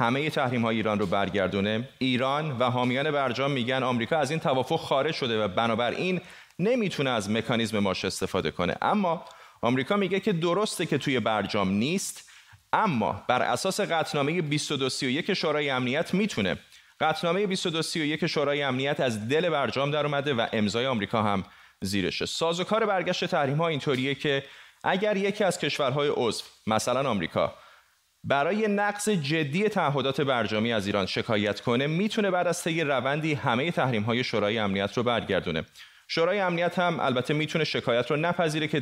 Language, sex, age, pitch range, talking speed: Persian, male, 30-49, 120-175 Hz, 160 wpm